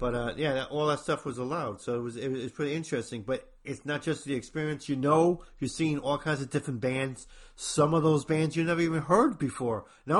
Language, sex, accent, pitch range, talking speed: English, male, American, 120-150 Hz, 255 wpm